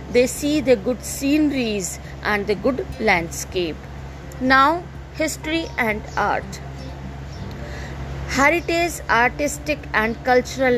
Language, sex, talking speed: English, female, 95 wpm